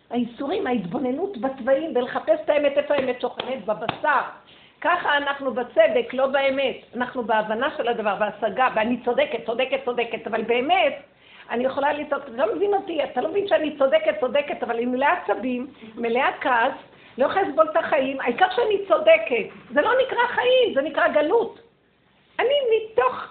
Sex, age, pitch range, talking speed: female, 50-69, 245-330 Hz, 135 wpm